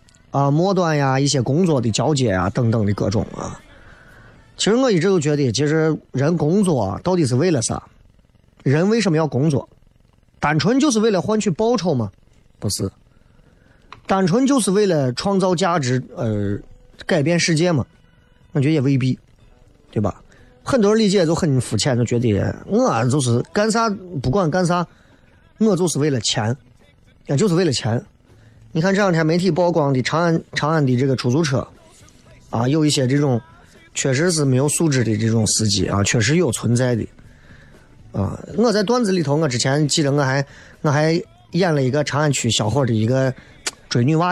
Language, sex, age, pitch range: Chinese, male, 30-49, 120-170 Hz